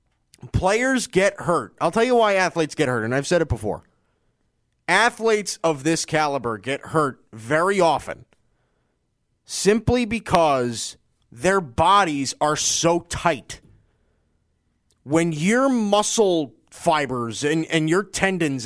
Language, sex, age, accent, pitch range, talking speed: English, male, 30-49, American, 150-210 Hz, 120 wpm